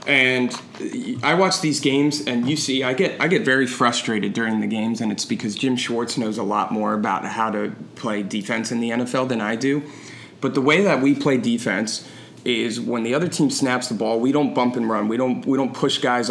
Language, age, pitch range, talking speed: English, 30-49, 115-135 Hz, 230 wpm